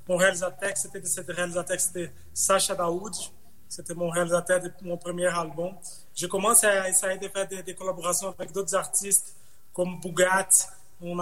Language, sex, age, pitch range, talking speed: French, male, 30-49, 175-200 Hz, 165 wpm